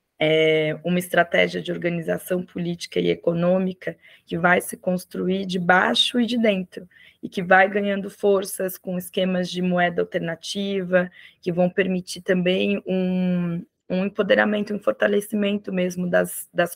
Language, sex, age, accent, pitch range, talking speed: Portuguese, female, 20-39, Brazilian, 175-205 Hz, 140 wpm